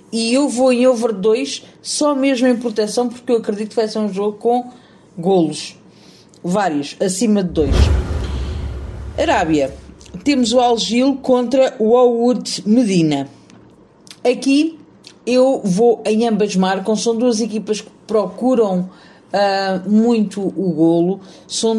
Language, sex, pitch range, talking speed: Portuguese, female, 180-245 Hz, 130 wpm